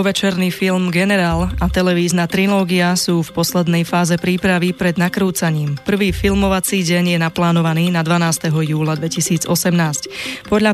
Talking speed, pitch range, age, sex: 130 wpm, 165-185 Hz, 20-39, female